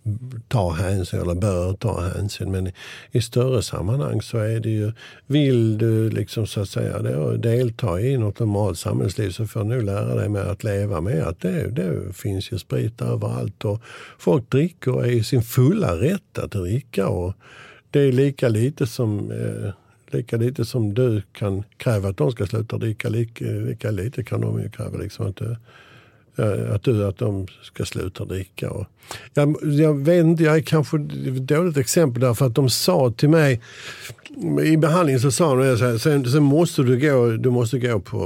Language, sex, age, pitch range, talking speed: Swedish, male, 60-79, 100-130 Hz, 185 wpm